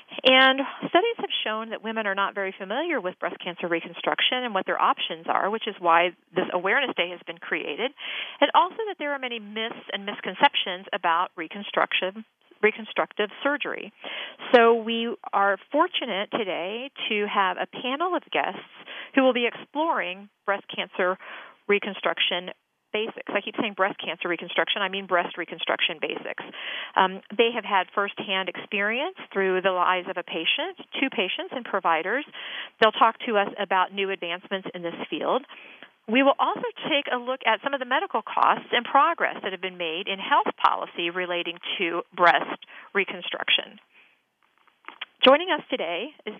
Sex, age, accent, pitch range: female, 40-59, American, 185-265 Hz